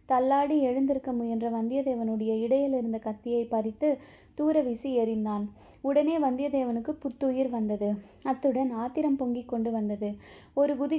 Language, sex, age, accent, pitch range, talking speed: Tamil, female, 20-39, native, 230-275 Hz, 115 wpm